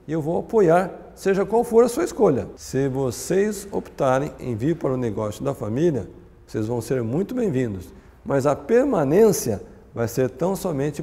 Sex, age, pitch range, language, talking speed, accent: male, 60-79, 115-160 Hz, Portuguese, 170 wpm, Brazilian